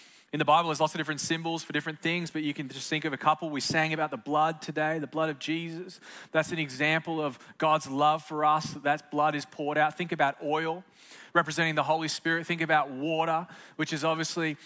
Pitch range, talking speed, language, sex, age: 155-185 Hz, 230 wpm, English, male, 20-39